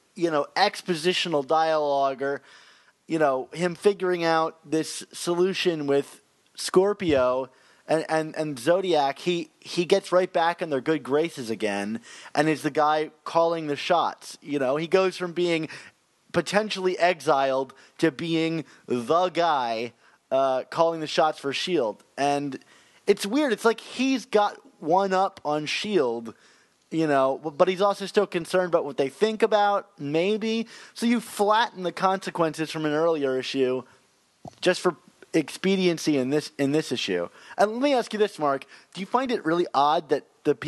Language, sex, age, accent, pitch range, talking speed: English, male, 30-49, American, 145-185 Hz, 160 wpm